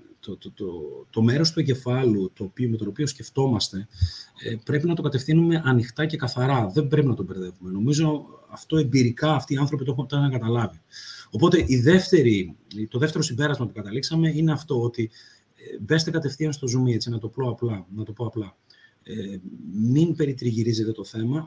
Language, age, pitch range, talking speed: Greek, 30-49, 105-150 Hz, 175 wpm